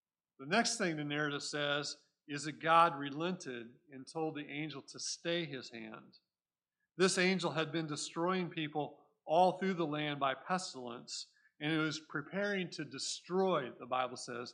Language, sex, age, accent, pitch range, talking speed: English, male, 40-59, American, 140-170 Hz, 160 wpm